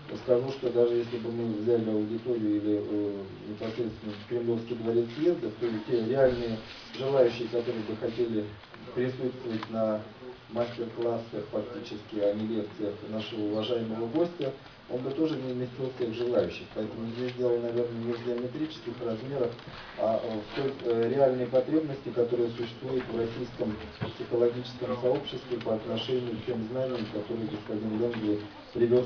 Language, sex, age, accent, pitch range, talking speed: Russian, male, 40-59, native, 110-125 Hz, 140 wpm